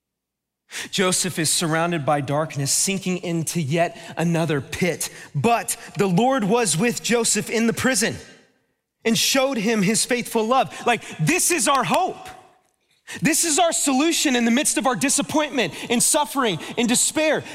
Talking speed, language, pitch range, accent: 150 wpm, English, 140-230 Hz, American